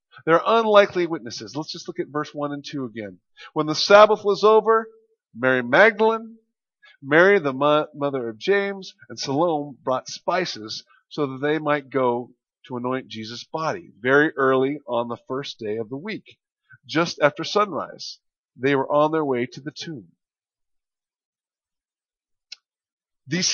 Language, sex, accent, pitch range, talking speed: English, male, American, 135-200 Hz, 150 wpm